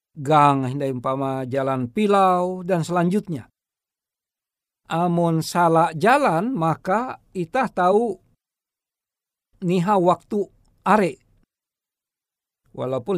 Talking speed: 75 wpm